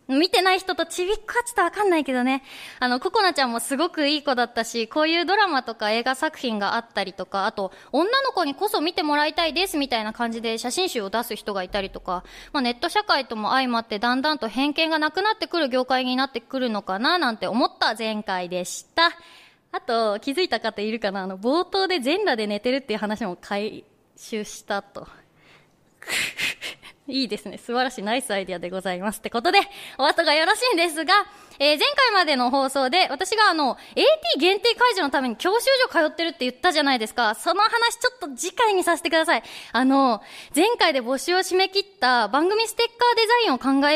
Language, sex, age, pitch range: Japanese, female, 20-39, 230-370 Hz